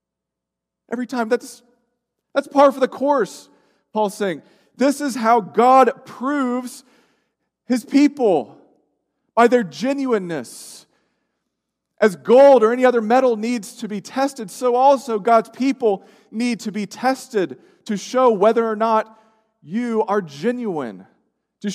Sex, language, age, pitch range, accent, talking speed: male, English, 40-59, 195-255 Hz, American, 130 wpm